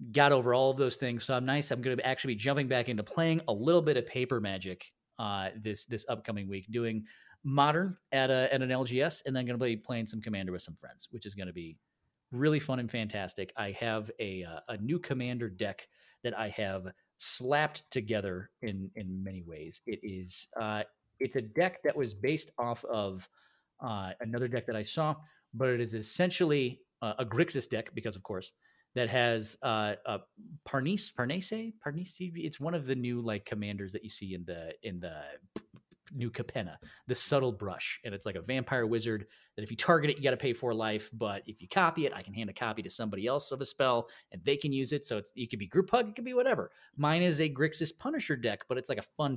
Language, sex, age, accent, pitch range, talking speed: English, male, 30-49, American, 105-140 Hz, 230 wpm